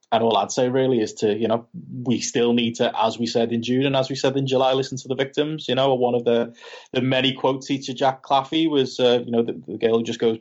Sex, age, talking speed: male, 20-39, 280 wpm